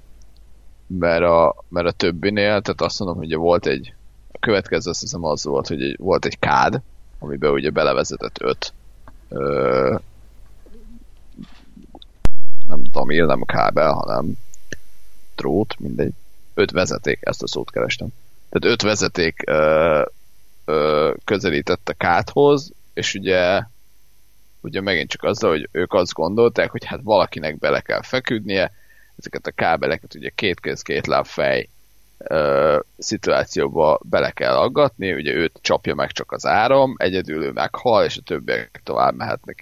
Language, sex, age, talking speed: Hungarian, male, 30-49, 140 wpm